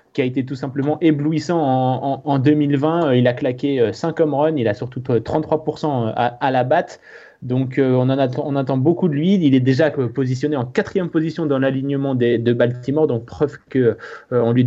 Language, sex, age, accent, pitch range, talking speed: French, male, 20-39, French, 120-150 Hz, 205 wpm